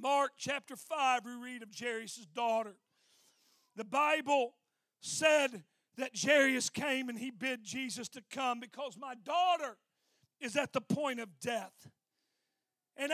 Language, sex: English, male